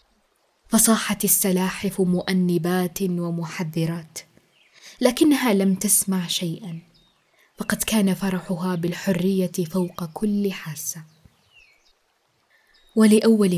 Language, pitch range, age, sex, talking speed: Arabic, 170-205 Hz, 20-39, female, 70 wpm